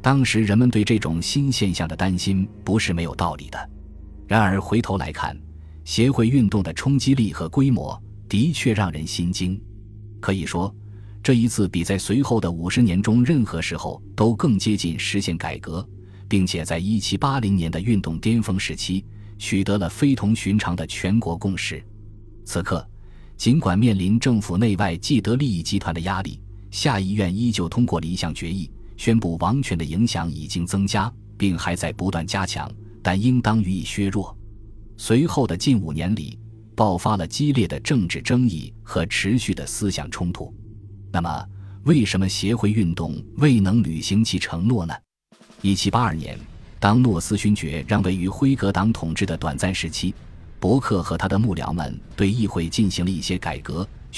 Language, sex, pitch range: Chinese, male, 85-110 Hz